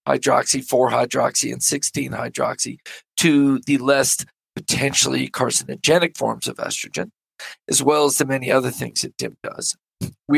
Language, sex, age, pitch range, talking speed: English, male, 40-59, 130-165 Hz, 135 wpm